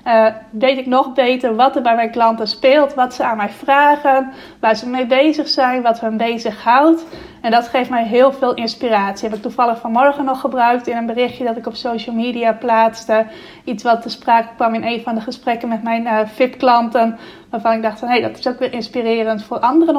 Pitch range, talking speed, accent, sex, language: 225-250 Hz, 215 wpm, Dutch, female, Dutch